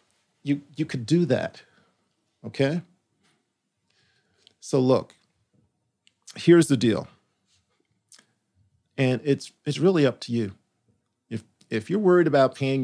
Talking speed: 110 wpm